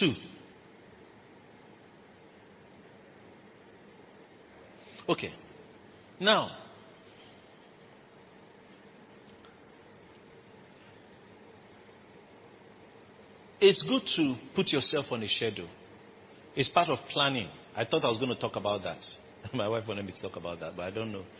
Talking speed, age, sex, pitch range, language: 100 wpm, 50-69, male, 110-150 Hz, English